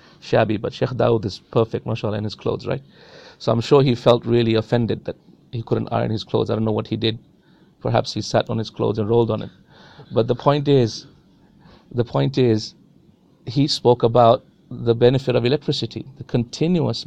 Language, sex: English, male